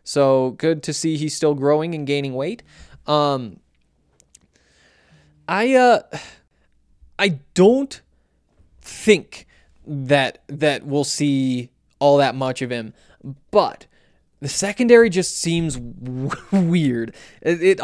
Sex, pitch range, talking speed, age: male, 130-175 Hz, 110 wpm, 20-39